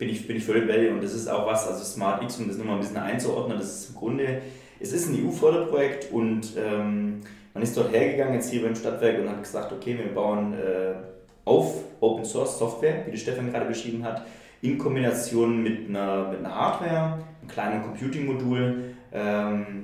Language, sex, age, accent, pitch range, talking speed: German, male, 20-39, German, 105-120 Hz, 205 wpm